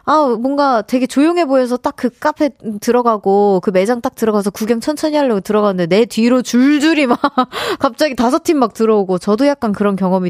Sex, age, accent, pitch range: female, 30-49, native, 205-290 Hz